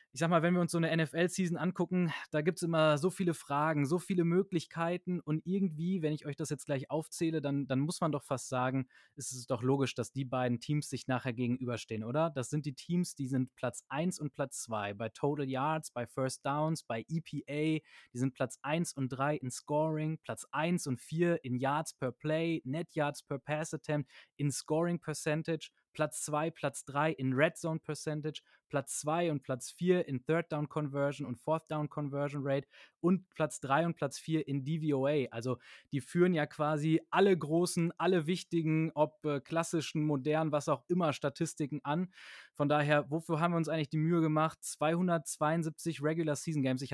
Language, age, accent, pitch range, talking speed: German, 20-39, German, 140-165 Hz, 195 wpm